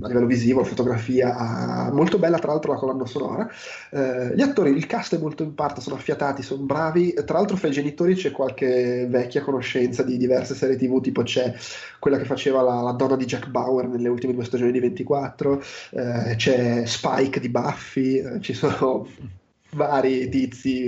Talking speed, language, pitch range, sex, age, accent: 185 wpm, Italian, 125-145 Hz, male, 20-39, native